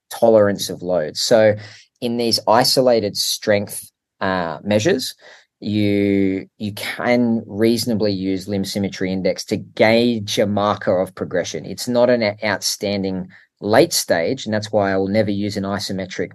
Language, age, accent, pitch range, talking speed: English, 20-39, Australian, 95-110 Hz, 145 wpm